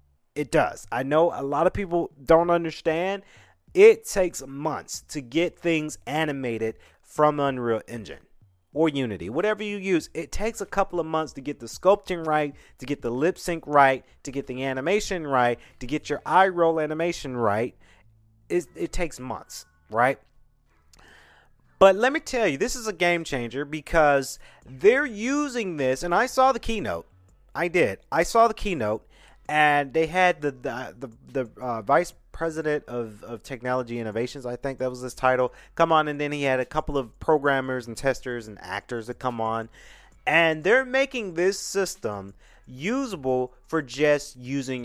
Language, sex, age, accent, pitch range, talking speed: English, male, 30-49, American, 120-170 Hz, 175 wpm